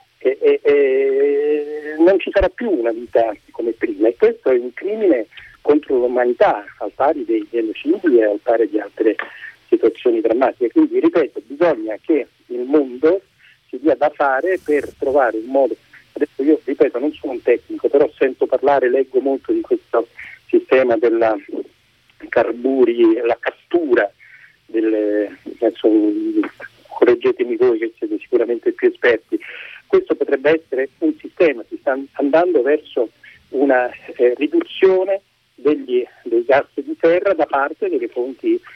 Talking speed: 140 wpm